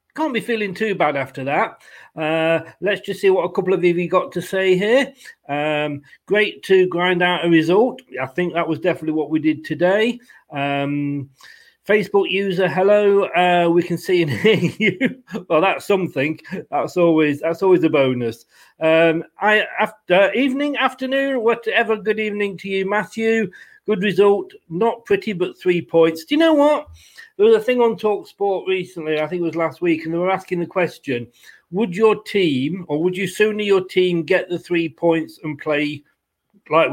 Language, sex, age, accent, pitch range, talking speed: English, male, 40-59, British, 160-210 Hz, 185 wpm